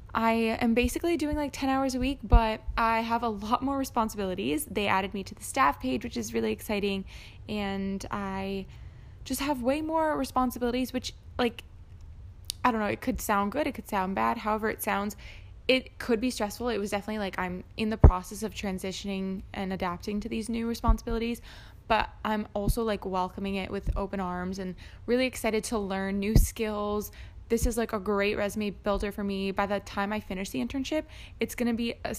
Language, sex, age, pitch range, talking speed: English, female, 10-29, 195-235 Hz, 200 wpm